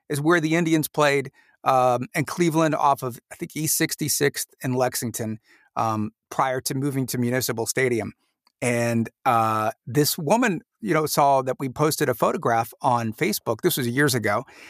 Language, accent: English, American